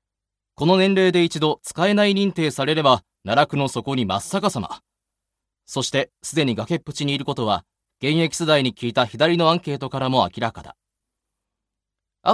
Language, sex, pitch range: Japanese, male, 105-170 Hz